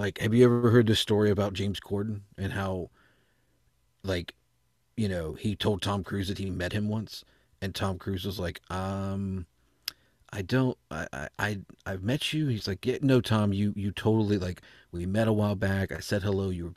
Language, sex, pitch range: English, male, 95-115 Hz